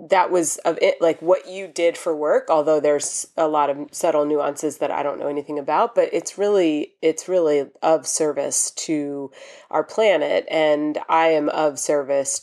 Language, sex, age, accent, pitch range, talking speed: English, female, 30-49, American, 150-185 Hz, 185 wpm